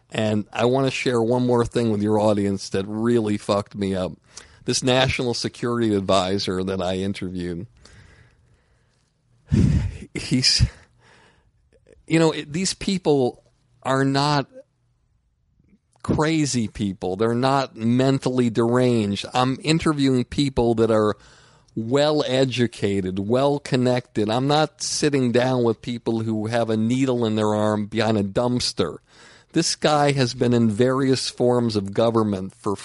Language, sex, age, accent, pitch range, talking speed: English, male, 50-69, American, 100-130 Hz, 125 wpm